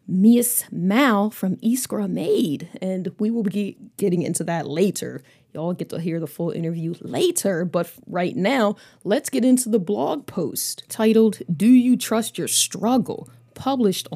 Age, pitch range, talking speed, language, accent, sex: 20-39, 160-220 Hz, 155 wpm, English, American, female